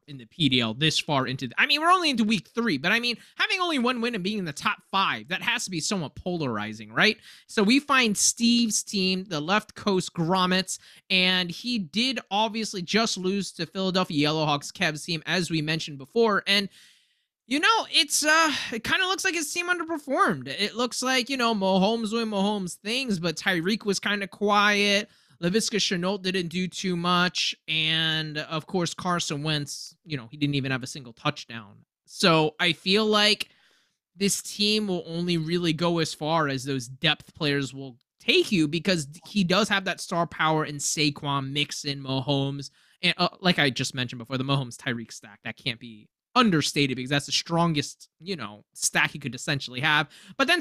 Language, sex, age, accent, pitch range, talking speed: English, male, 20-39, American, 150-210 Hz, 190 wpm